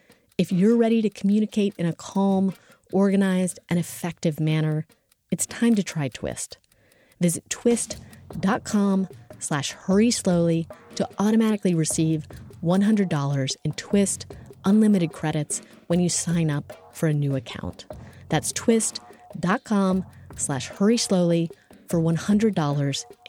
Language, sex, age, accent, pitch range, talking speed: English, female, 30-49, American, 160-215 Hz, 115 wpm